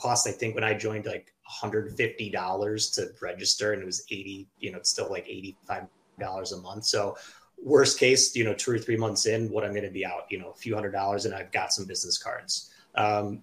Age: 30-49